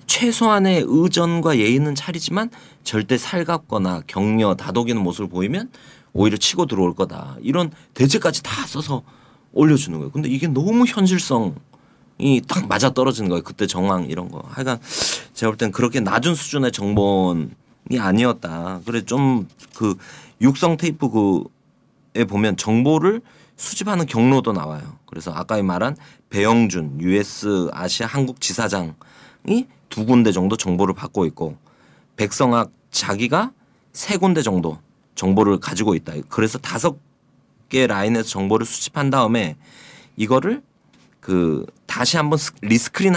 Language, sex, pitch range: Korean, male, 105-155 Hz